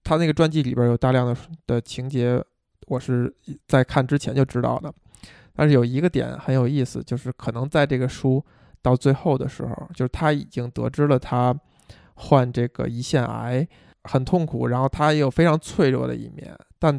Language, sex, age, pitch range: Chinese, male, 20-39, 125-150 Hz